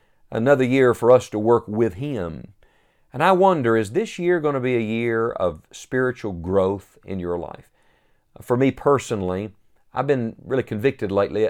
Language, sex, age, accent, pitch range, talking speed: English, male, 50-69, American, 110-145 Hz, 170 wpm